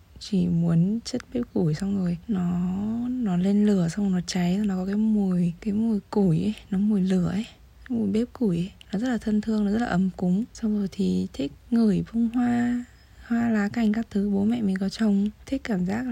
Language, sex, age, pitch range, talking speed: Vietnamese, female, 20-39, 185-220 Hz, 230 wpm